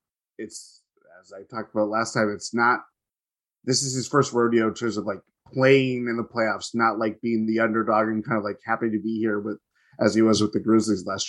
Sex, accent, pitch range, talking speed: male, American, 110-130 Hz, 230 wpm